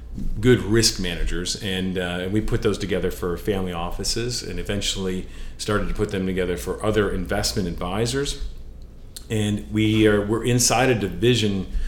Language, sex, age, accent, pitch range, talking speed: English, male, 40-59, American, 90-110 Hz, 150 wpm